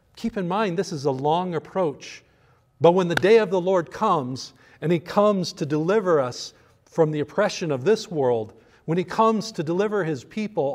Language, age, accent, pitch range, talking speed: English, 40-59, American, 140-190 Hz, 195 wpm